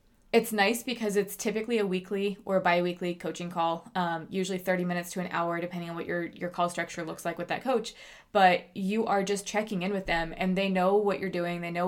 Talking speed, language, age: 235 wpm, English, 20-39